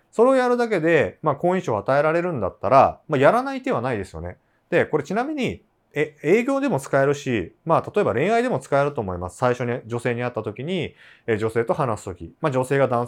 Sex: male